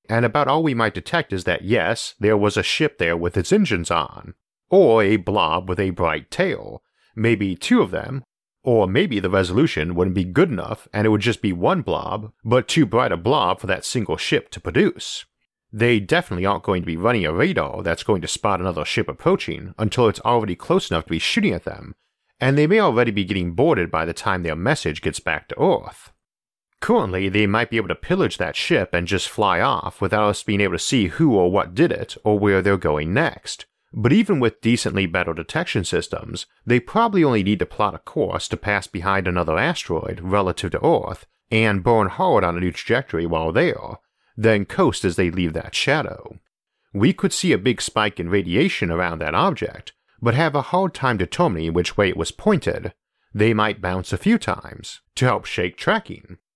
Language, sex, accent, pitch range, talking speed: English, male, American, 90-115 Hz, 210 wpm